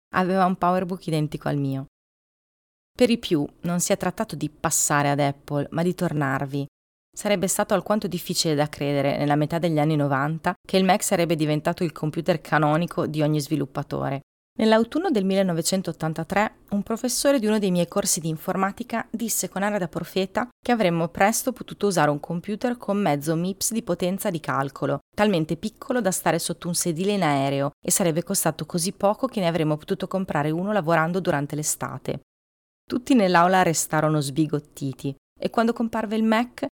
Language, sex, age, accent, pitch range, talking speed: Italian, female, 30-49, native, 150-200 Hz, 170 wpm